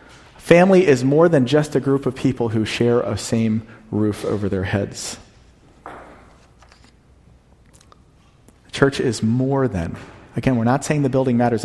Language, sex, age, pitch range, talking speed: English, male, 40-59, 105-145 Hz, 145 wpm